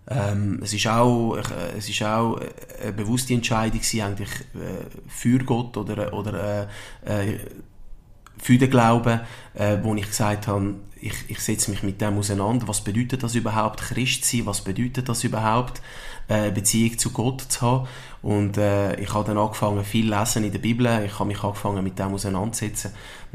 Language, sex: German, male